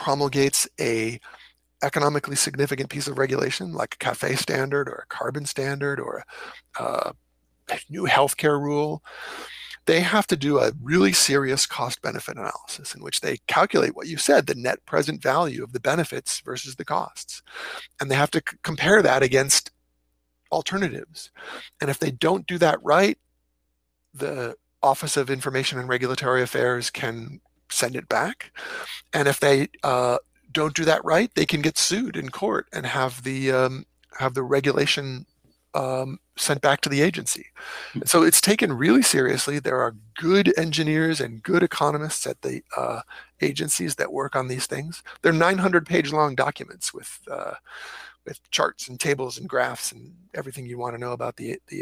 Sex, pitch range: male, 125-150 Hz